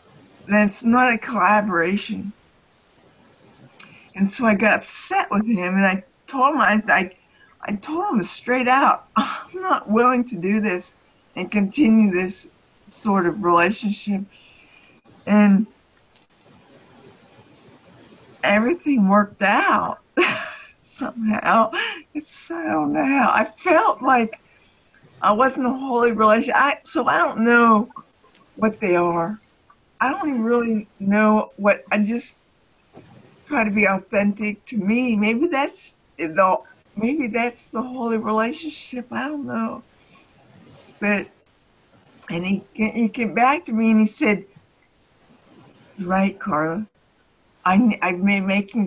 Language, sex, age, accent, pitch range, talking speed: English, female, 50-69, American, 195-245 Hz, 125 wpm